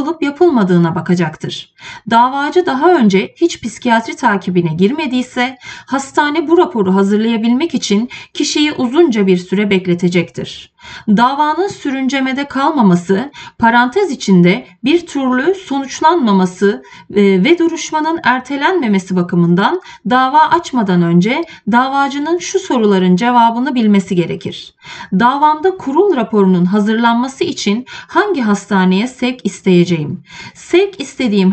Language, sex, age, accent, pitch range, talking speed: Turkish, female, 30-49, native, 190-300 Hz, 95 wpm